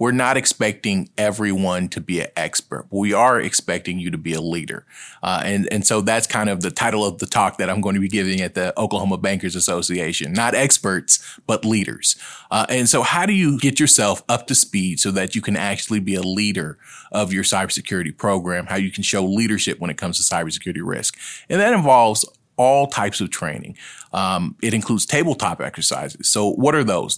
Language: English